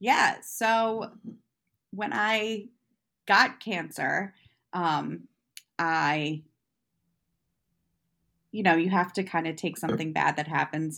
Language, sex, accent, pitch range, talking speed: English, female, American, 165-230 Hz, 110 wpm